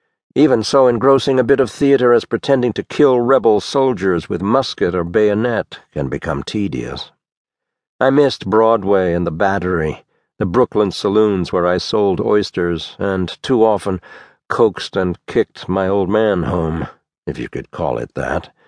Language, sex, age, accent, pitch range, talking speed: English, male, 60-79, American, 90-125 Hz, 155 wpm